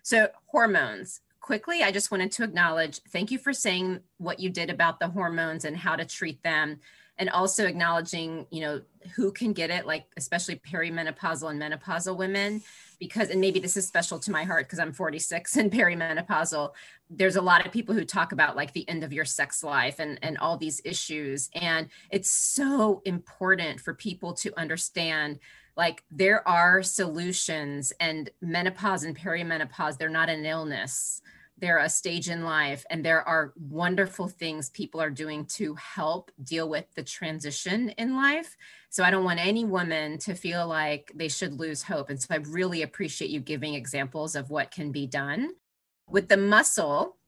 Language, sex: English, female